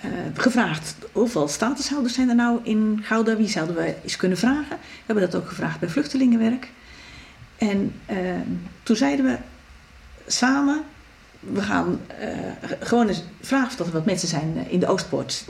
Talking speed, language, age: 165 wpm, Dutch, 40-59